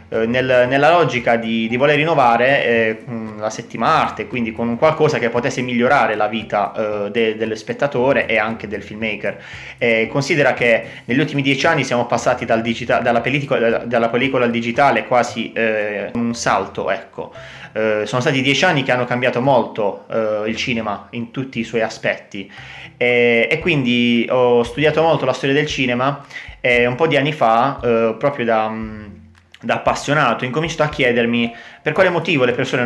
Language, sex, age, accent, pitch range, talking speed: Italian, male, 30-49, native, 115-130 Hz, 175 wpm